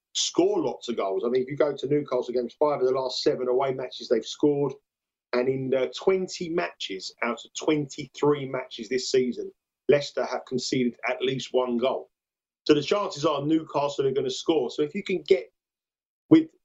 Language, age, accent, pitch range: English, 40-59, British, 125-165 Hz